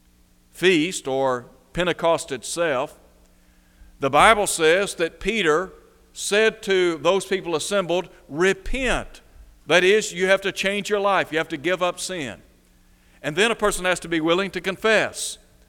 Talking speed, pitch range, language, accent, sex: 150 wpm, 140-185 Hz, English, American, male